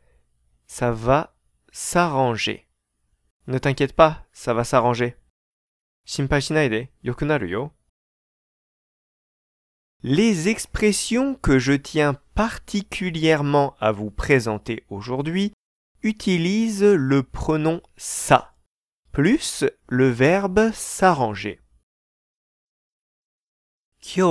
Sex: male